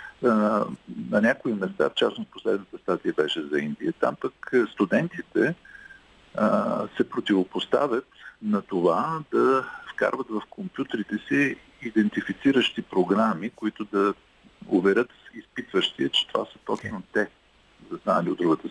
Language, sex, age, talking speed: Bulgarian, male, 50-69, 125 wpm